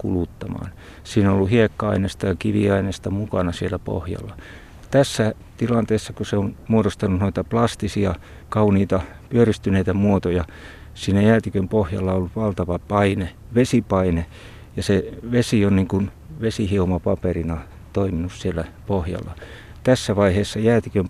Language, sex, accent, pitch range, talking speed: Finnish, male, native, 90-105 Hz, 115 wpm